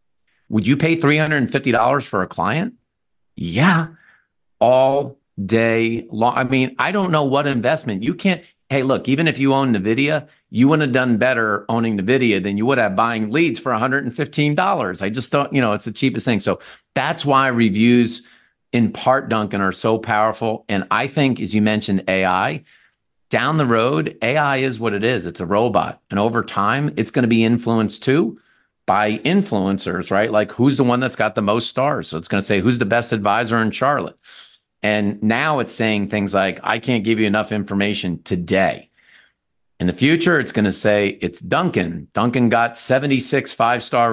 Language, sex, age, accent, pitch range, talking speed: English, male, 50-69, American, 105-135 Hz, 185 wpm